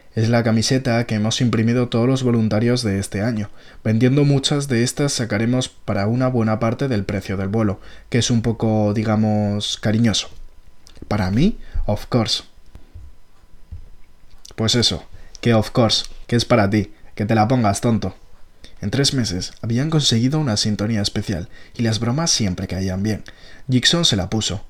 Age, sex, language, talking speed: 20-39, male, Spanish, 165 wpm